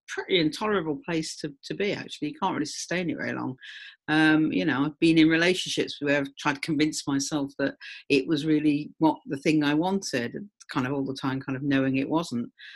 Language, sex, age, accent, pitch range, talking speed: English, female, 50-69, British, 145-190 Hz, 215 wpm